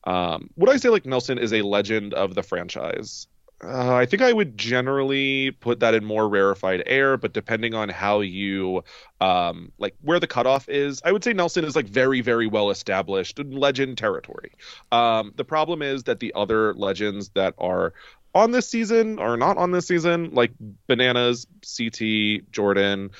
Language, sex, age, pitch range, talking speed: English, male, 30-49, 105-135 Hz, 180 wpm